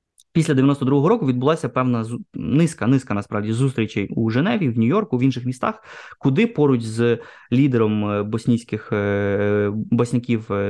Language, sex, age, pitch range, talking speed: Ukrainian, male, 20-39, 115-135 Hz, 130 wpm